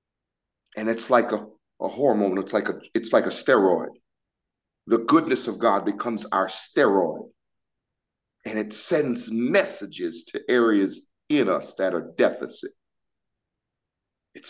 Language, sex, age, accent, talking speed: English, male, 50-69, American, 130 wpm